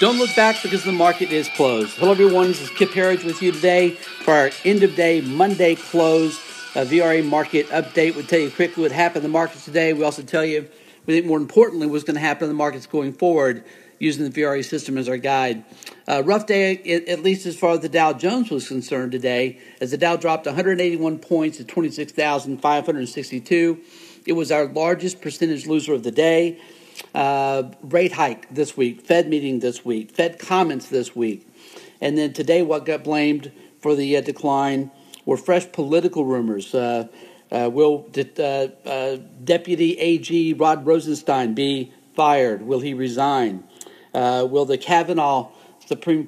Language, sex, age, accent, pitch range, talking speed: English, male, 50-69, American, 140-170 Hz, 180 wpm